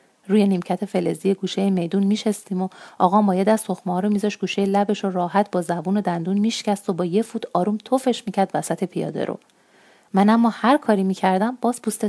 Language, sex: Persian, female